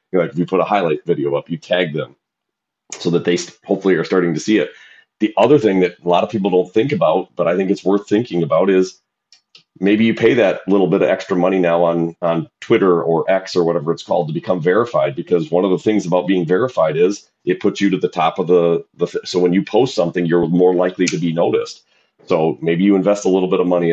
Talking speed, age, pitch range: 250 wpm, 30-49, 85-100 Hz